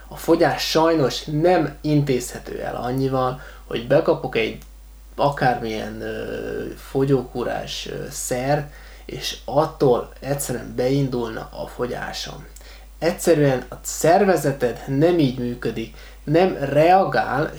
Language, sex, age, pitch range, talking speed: Hungarian, male, 20-39, 120-150 Hz, 90 wpm